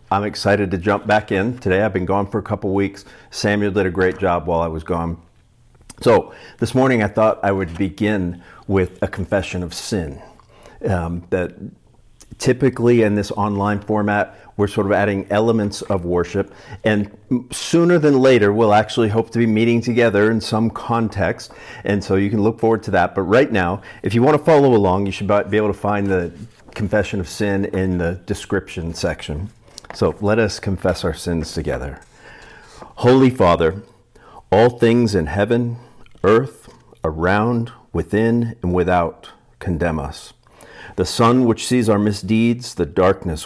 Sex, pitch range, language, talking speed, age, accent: male, 95-115 Hz, English, 170 wpm, 50-69, American